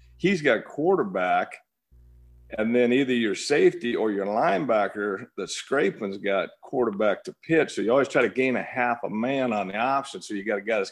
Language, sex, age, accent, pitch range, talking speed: English, male, 50-69, American, 95-120 Hz, 200 wpm